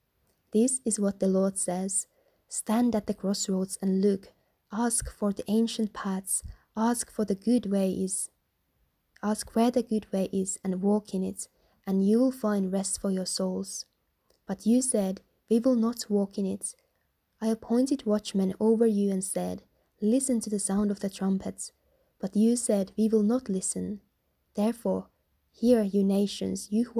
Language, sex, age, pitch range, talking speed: English, female, 20-39, 190-225 Hz, 170 wpm